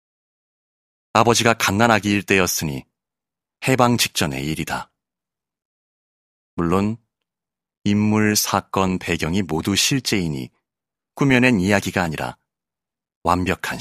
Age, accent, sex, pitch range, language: 40-59, native, male, 80-105 Hz, Korean